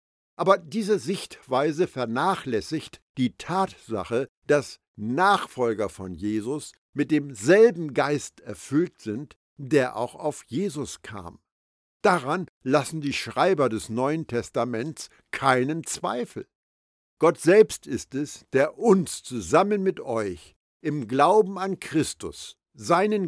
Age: 50-69